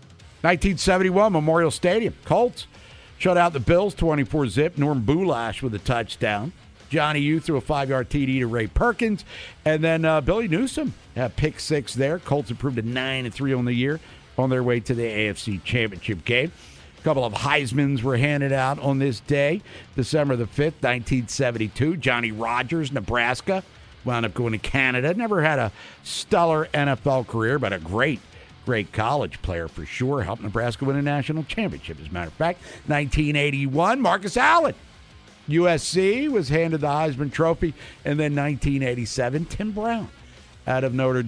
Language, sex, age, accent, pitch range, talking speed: English, male, 50-69, American, 120-155 Hz, 160 wpm